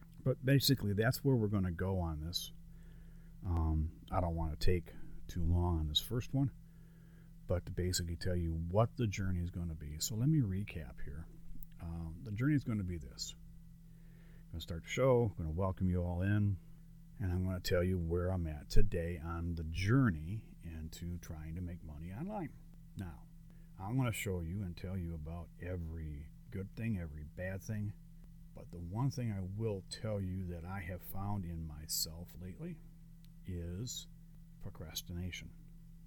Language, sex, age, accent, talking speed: English, male, 40-59, American, 185 wpm